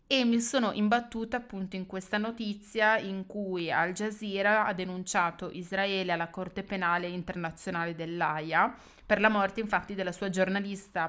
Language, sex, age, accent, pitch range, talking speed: Italian, female, 20-39, native, 175-205 Hz, 145 wpm